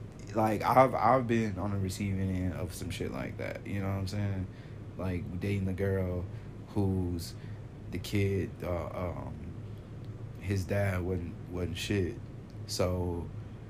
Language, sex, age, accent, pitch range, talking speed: English, male, 20-39, American, 90-110 Hz, 145 wpm